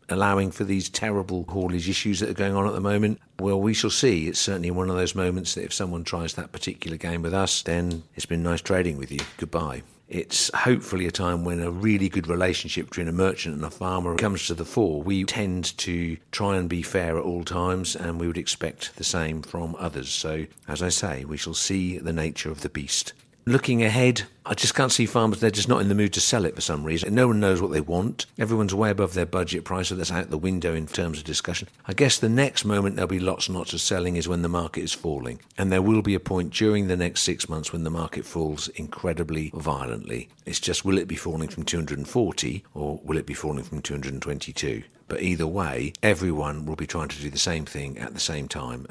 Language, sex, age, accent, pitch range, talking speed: English, male, 50-69, British, 80-95 Hz, 240 wpm